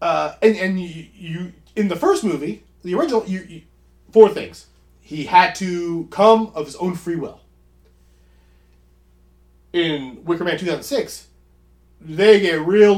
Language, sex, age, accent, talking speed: English, male, 30-49, American, 145 wpm